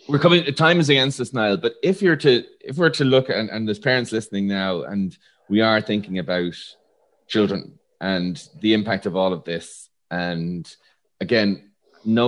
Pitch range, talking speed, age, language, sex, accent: 95-115 Hz, 180 wpm, 30-49, English, male, Irish